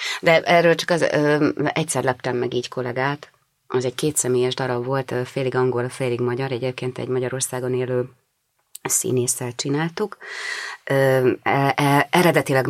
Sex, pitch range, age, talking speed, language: female, 125-145 Hz, 30-49, 135 wpm, Hungarian